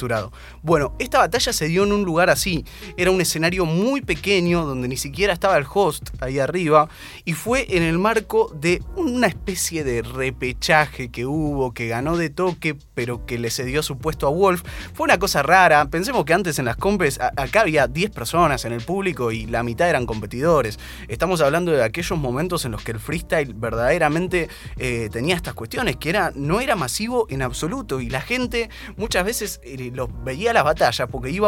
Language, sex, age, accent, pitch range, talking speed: Spanish, male, 20-39, Argentinian, 125-180 Hz, 190 wpm